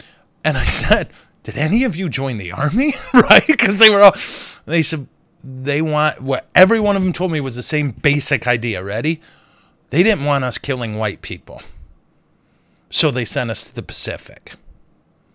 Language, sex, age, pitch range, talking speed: English, male, 30-49, 115-155 Hz, 180 wpm